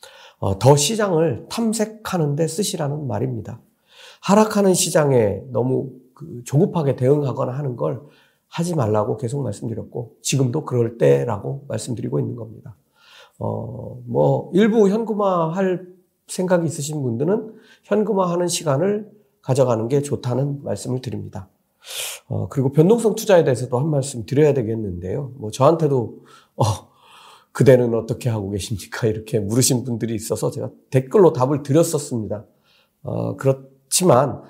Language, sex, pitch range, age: Korean, male, 120-170 Hz, 40-59